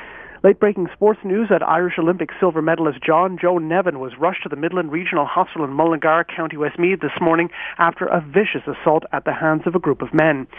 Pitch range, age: 150-180 Hz, 40-59